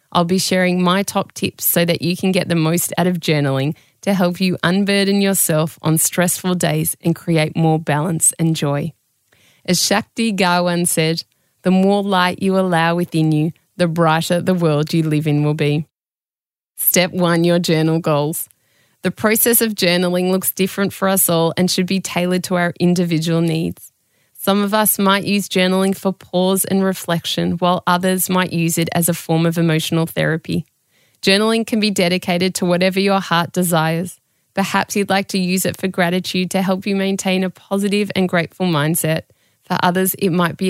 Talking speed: 185 wpm